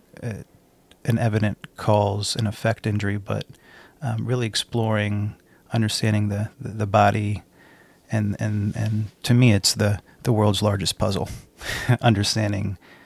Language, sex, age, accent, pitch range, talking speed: English, male, 40-59, American, 100-115 Hz, 130 wpm